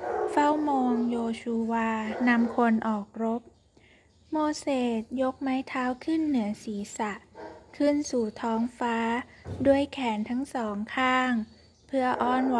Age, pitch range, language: 20-39, 225-265 Hz, Thai